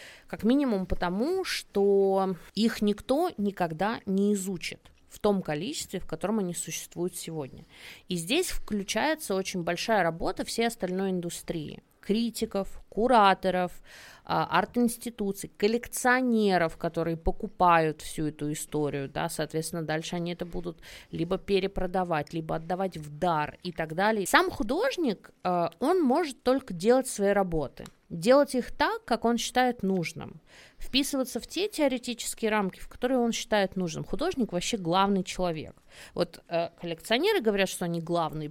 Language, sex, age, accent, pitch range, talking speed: Russian, female, 20-39, native, 175-235 Hz, 135 wpm